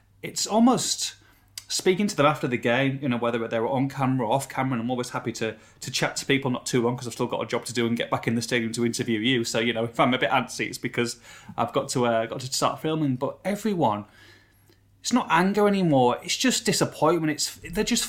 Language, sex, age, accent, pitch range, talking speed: English, male, 30-49, British, 115-165 Hz, 255 wpm